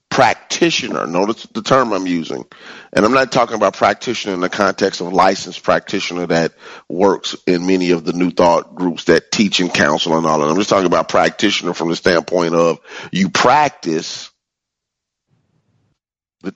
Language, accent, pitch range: English, American, 90-115 Hz